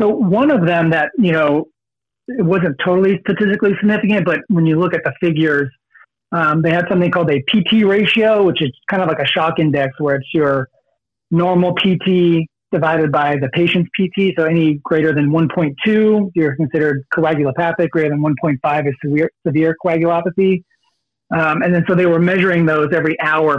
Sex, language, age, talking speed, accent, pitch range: male, English, 40-59, 180 wpm, American, 150-180 Hz